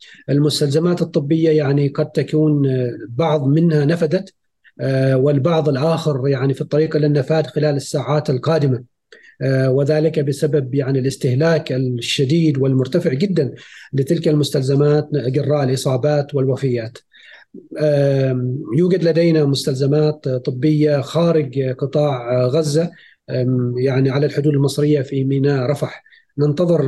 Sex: male